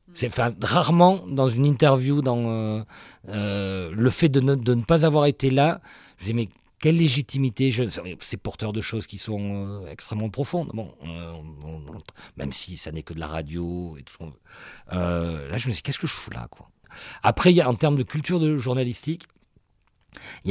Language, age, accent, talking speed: French, 50-69, French, 205 wpm